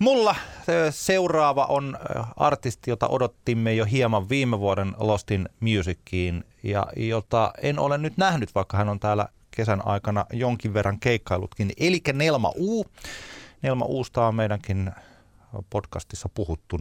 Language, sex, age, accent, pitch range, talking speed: Finnish, male, 30-49, native, 95-125 Hz, 130 wpm